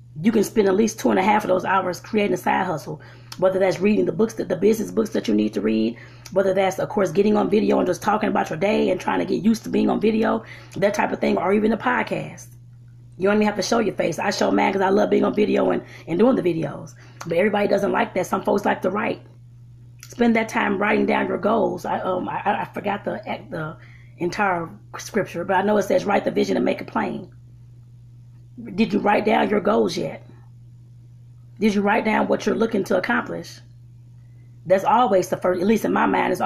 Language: English